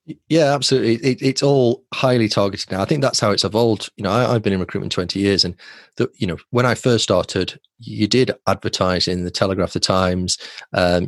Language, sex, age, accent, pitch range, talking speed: English, male, 30-49, British, 90-110 Hz, 215 wpm